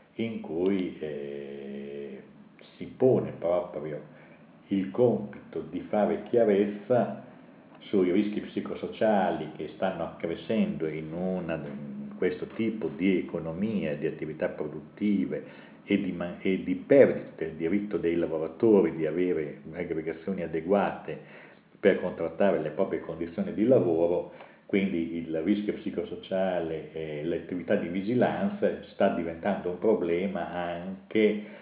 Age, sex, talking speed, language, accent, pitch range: 50-69, male, 110 wpm, Italian, native, 75-100 Hz